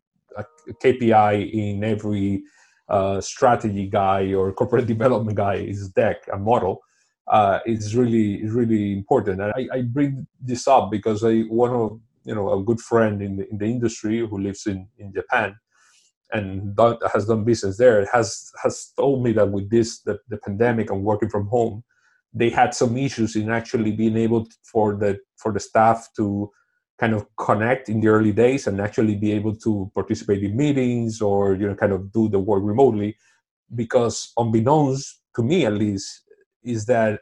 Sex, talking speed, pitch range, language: male, 180 wpm, 105-120 Hz, English